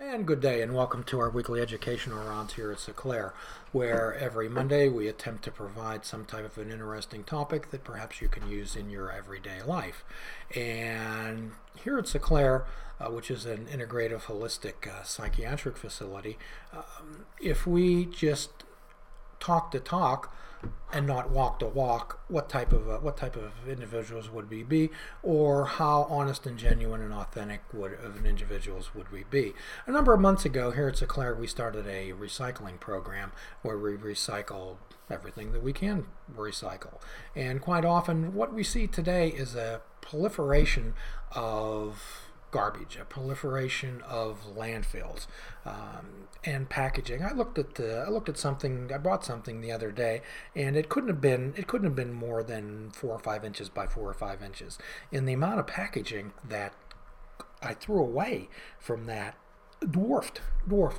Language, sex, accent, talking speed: English, male, American, 170 wpm